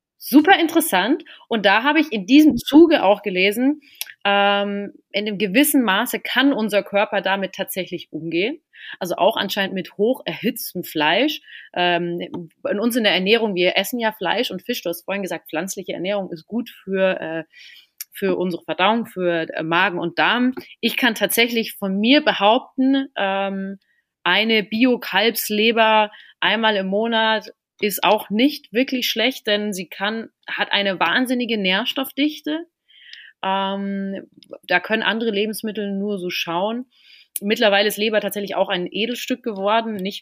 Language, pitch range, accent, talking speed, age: German, 190-235 Hz, German, 140 wpm, 30-49